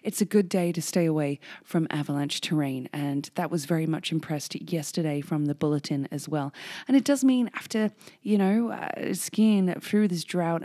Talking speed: 190 wpm